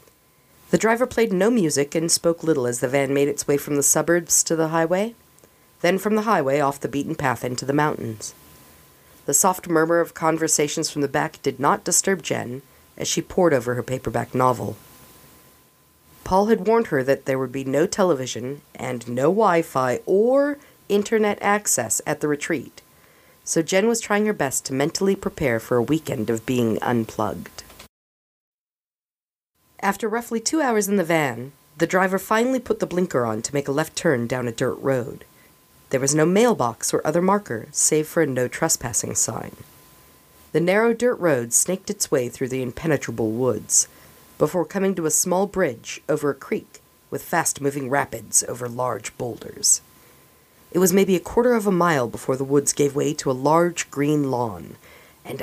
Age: 40-59